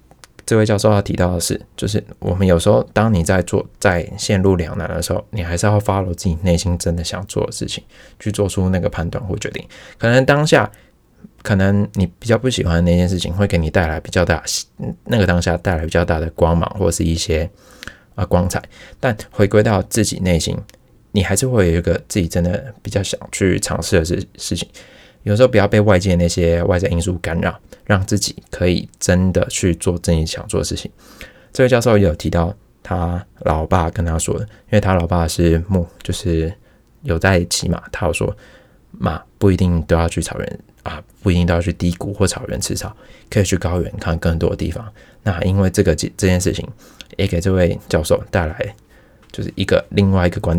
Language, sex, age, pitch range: Chinese, male, 20-39, 85-105 Hz